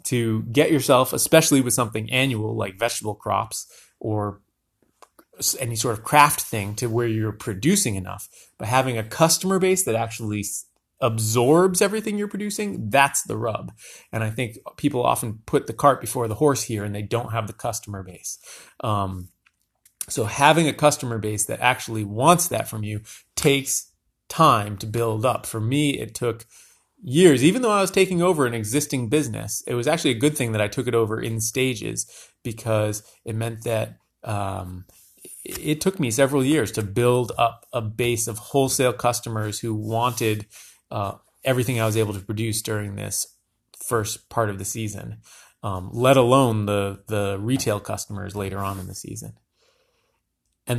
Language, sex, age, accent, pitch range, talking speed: English, male, 30-49, American, 105-140 Hz, 170 wpm